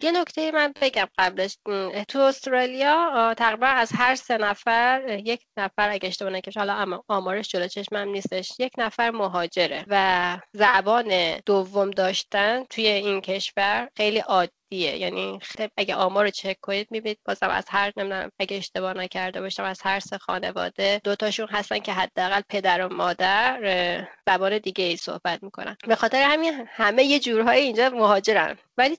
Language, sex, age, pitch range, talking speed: Persian, female, 20-39, 190-235 Hz, 155 wpm